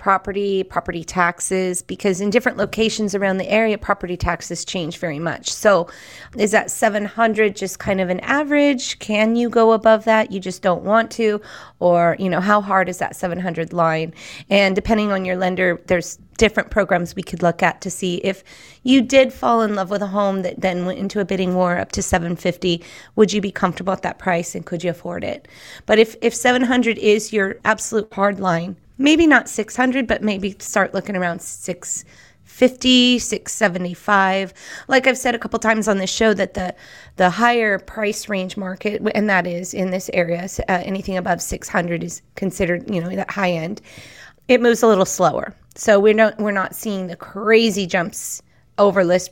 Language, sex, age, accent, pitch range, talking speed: English, female, 30-49, American, 180-215 Hz, 190 wpm